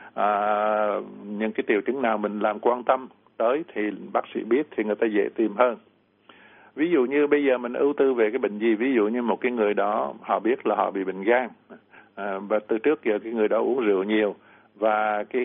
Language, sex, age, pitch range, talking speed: Vietnamese, male, 60-79, 105-130 Hz, 235 wpm